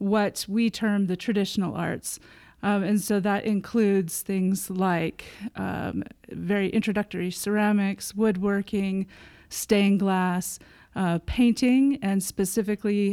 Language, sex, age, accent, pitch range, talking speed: English, female, 30-49, American, 185-210 Hz, 110 wpm